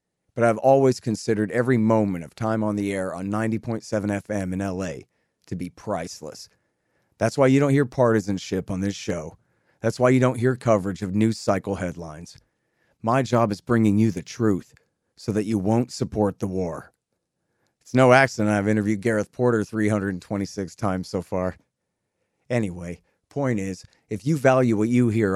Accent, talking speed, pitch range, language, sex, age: American, 170 wpm, 100-125 Hz, English, male, 40-59